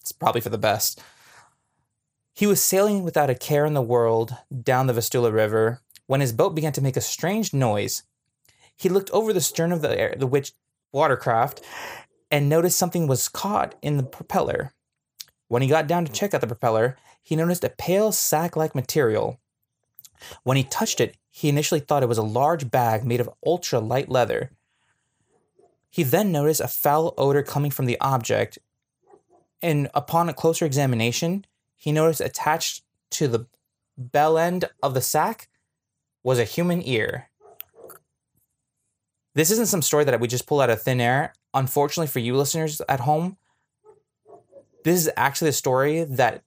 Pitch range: 125-160 Hz